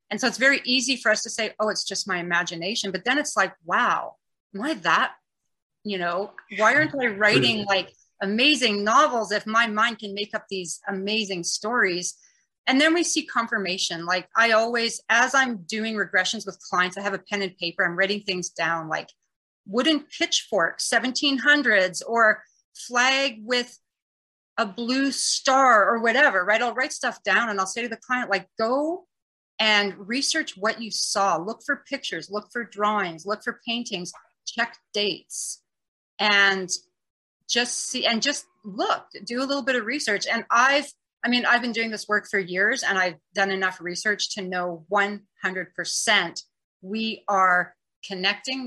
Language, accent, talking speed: English, American, 170 wpm